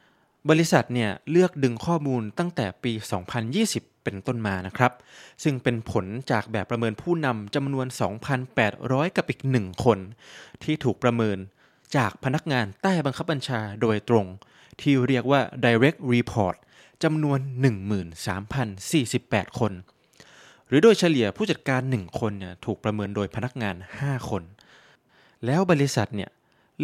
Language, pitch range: Thai, 110-140 Hz